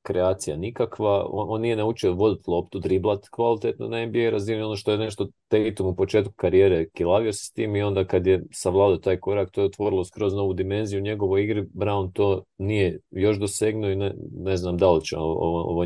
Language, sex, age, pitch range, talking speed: English, male, 30-49, 90-110 Hz, 210 wpm